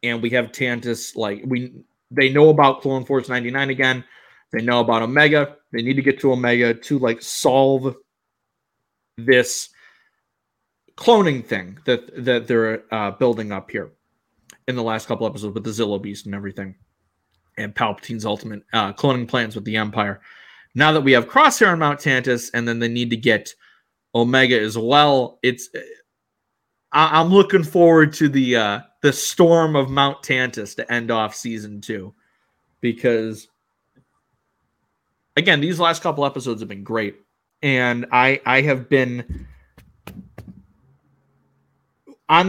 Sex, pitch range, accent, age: male, 115-140 Hz, American, 30-49